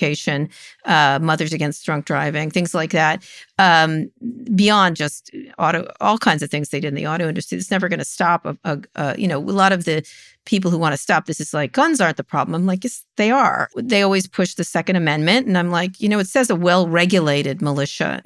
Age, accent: 50-69, American